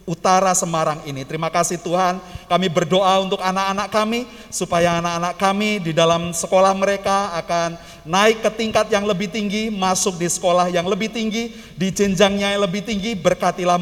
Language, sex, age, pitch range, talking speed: Indonesian, male, 40-59, 180-210 Hz, 160 wpm